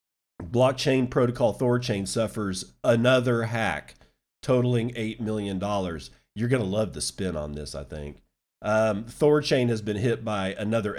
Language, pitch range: English, 95-125 Hz